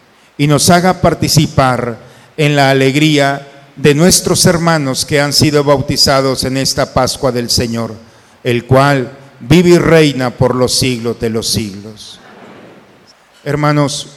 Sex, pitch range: male, 130-165 Hz